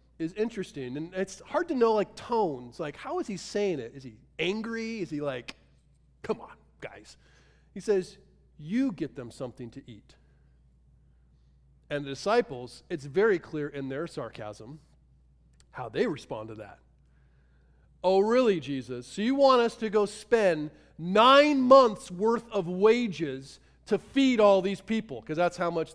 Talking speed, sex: 160 wpm, male